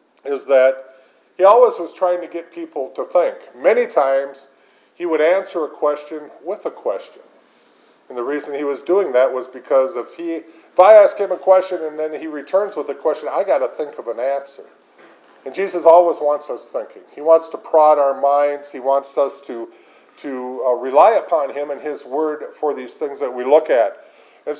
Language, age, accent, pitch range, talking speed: English, 50-69, American, 140-205 Hz, 205 wpm